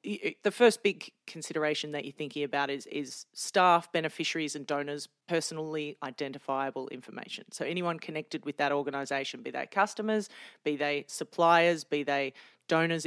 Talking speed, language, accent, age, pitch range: 145 wpm, English, Australian, 40-59, 145-175 Hz